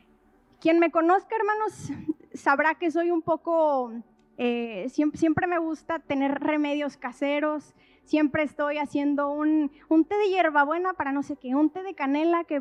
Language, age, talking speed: Spanish, 20-39, 160 wpm